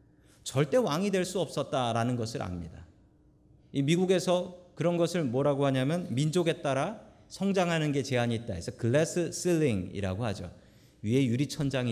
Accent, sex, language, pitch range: native, male, Korean, 105-145 Hz